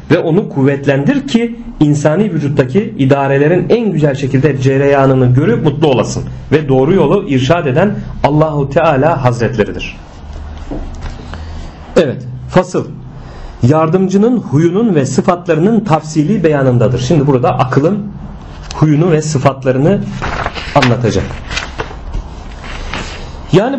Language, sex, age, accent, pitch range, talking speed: Turkish, male, 40-59, native, 125-195 Hz, 95 wpm